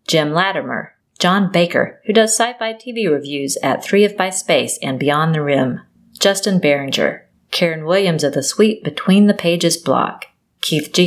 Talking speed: 170 wpm